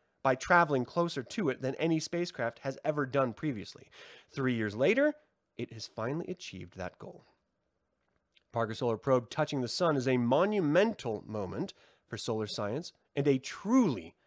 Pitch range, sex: 115-165 Hz, male